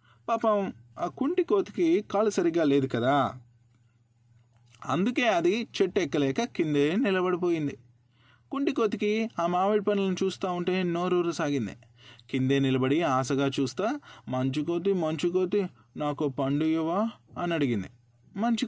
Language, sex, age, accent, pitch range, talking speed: Telugu, male, 20-39, native, 120-180 Hz, 120 wpm